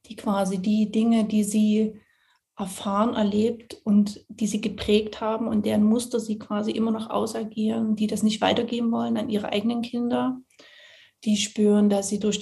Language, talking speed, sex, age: German, 170 wpm, female, 30-49